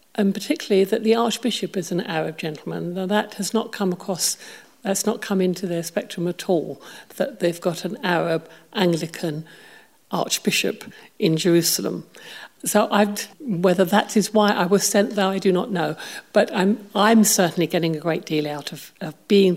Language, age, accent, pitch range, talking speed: English, 60-79, British, 165-200 Hz, 175 wpm